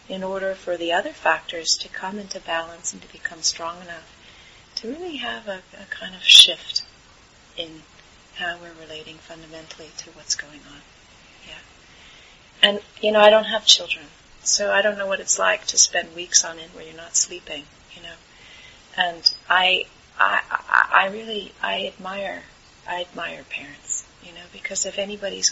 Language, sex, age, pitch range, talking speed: English, female, 40-59, 175-235 Hz, 170 wpm